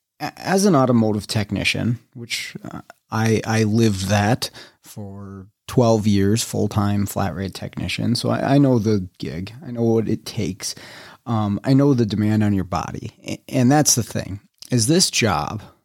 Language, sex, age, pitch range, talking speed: English, male, 30-49, 105-125 Hz, 165 wpm